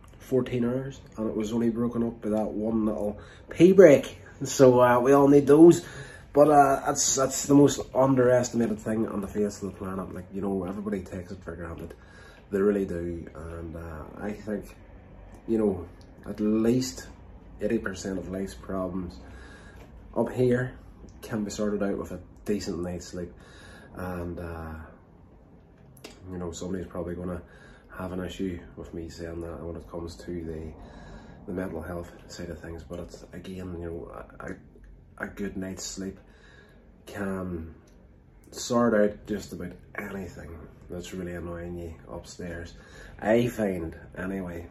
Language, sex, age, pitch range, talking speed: English, male, 20-39, 85-110 Hz, 160 wpm